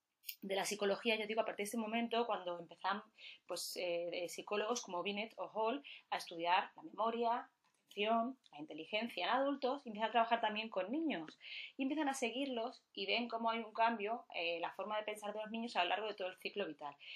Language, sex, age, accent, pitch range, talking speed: Spanish, female, 20-39, Spanish, 185-240 Hz, 220 wpm